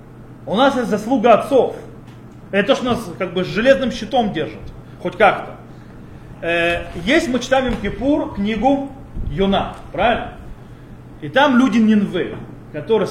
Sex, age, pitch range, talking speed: male, 30-49, 175-265 Hz, 135 wpm